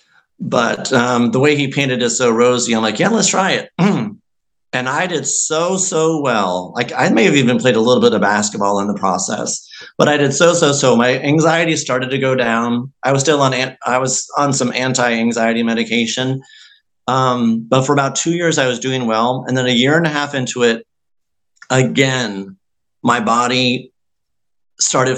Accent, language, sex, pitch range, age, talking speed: American, English, male, 115-145 Hz, 40-59, 200 wpm